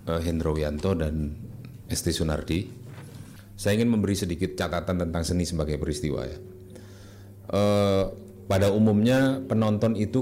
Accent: native